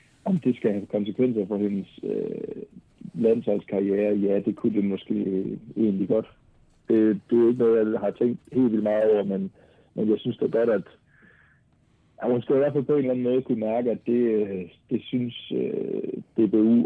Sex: male